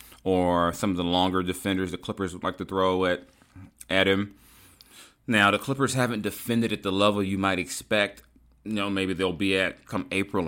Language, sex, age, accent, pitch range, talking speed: English, male, 30-49, American, 85-95 Hz, 195 wpm